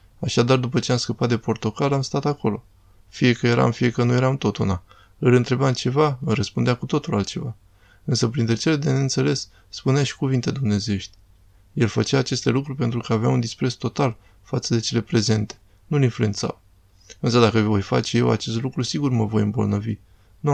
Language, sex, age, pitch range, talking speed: Romanian, male, 20-39, 105-130 Hz, 185 wpm